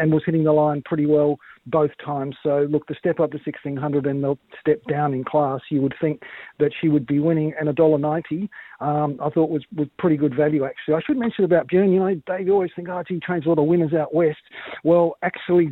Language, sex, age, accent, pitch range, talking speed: English, male, 40-59, Australian, 145-170 Hz, 245 wpm